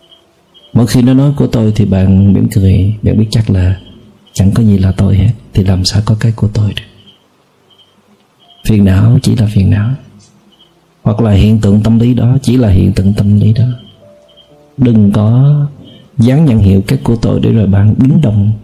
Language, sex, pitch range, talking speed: Vietnamese, male, 100-125 Hz, 195 wpm